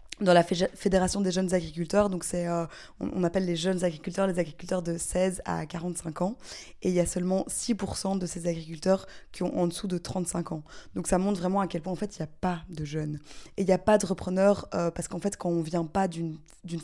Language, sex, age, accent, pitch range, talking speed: French, female, 20-39, French, 170-190 Hz, 250 wpm